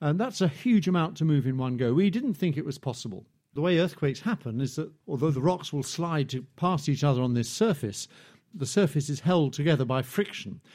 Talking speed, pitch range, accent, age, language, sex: 225 wpm, 130-170 Hz, British, 50-69, English, male